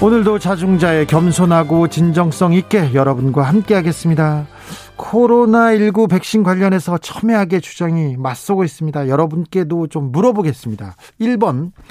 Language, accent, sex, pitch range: Korean, native, male, 140-190 Hz